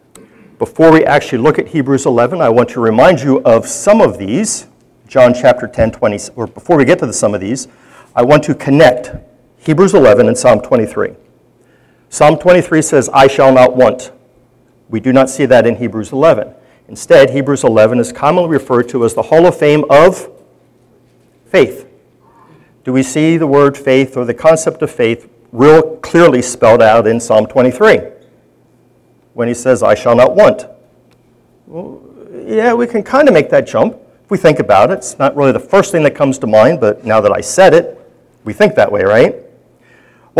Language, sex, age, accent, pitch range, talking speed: English, male, 50-69, American, 125-160 Hz, 185 wpm